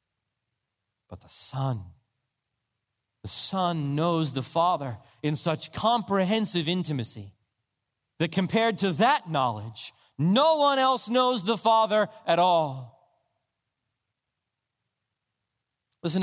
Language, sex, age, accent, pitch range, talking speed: English, male, 40-59, American, 125-195 Hz, 90 wpm